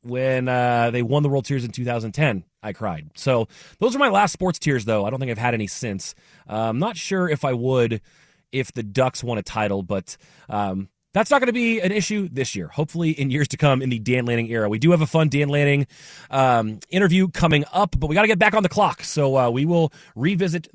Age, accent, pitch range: 30-49, American, 120-170 Hz